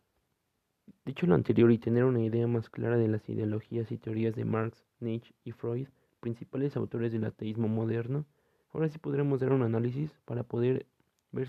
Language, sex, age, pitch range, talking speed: Spanish, male, 20-39, 115-130 Hz, 170 wpm